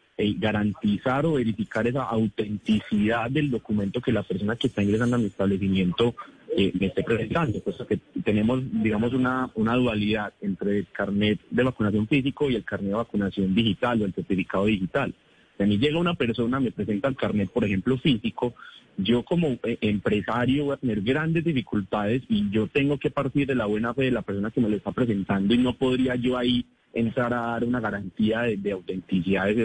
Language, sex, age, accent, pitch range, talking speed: Spanish, male, 30-49, Colombian, 105-125 Hz, 195 wpm